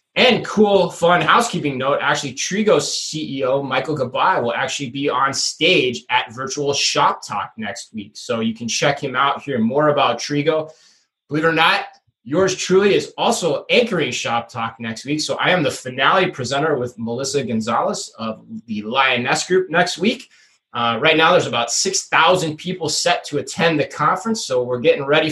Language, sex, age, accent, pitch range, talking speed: English, male, 20-39, American, 130-180 Hz, 180 wpm